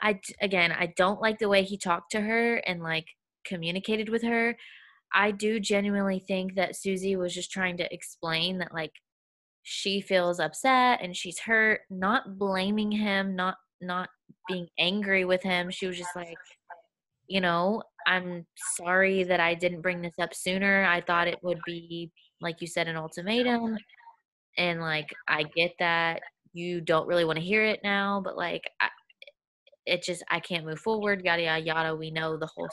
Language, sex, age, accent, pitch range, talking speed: English, female, 20-39, American, 170-205 Hz, 180 wpm